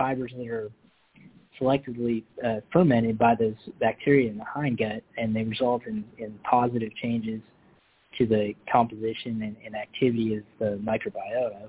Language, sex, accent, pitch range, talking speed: English, male, American, 110-130 Hz, 145 wpm